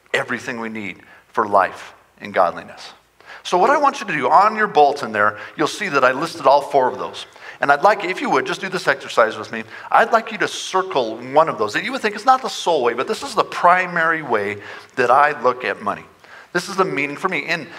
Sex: male